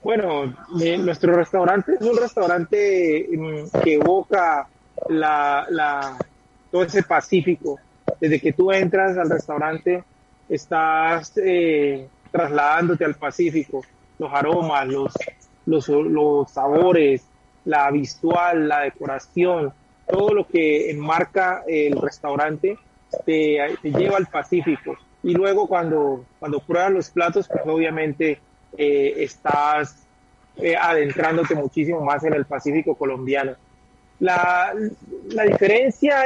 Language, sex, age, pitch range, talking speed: Spanish, male, 30-49, 150-195 Hz, 115 wpm